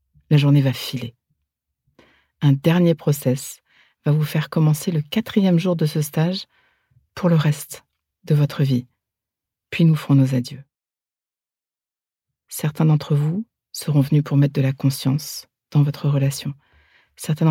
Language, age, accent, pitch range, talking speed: French, 50-69, French, 135-155 Hz, 145 wpm